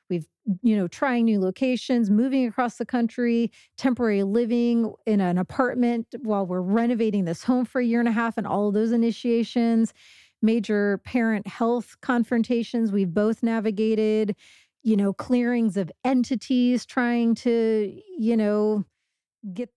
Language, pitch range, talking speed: English, 200-235 Hz, 145 wpm